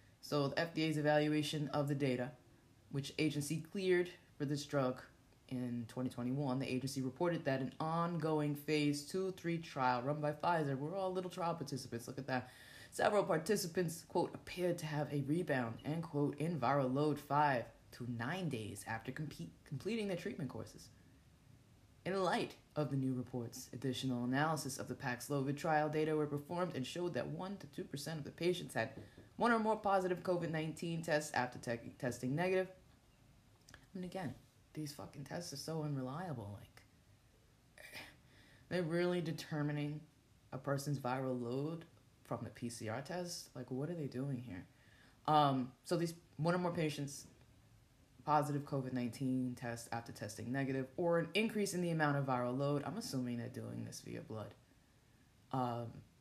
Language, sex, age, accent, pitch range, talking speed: English, female, 20-39, American, 125-160 Hz, 165 wpm